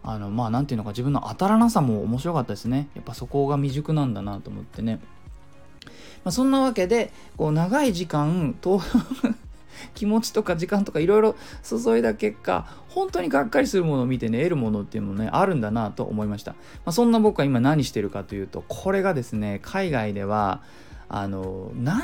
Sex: male